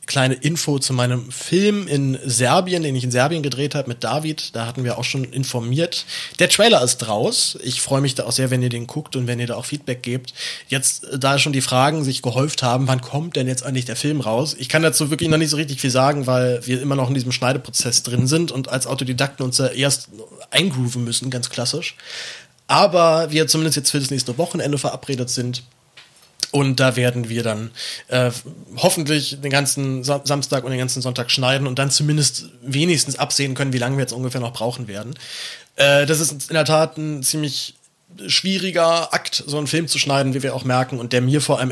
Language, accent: German, German